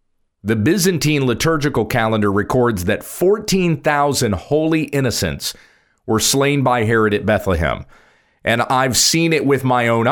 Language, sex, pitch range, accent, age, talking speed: English, male, 110-140 Hz, American, 40-59, 130 wpm